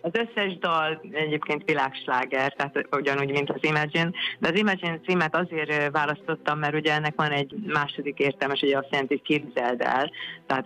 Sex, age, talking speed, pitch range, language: female, 30-49, 170 wpm, 130-150 Hz, Hungarian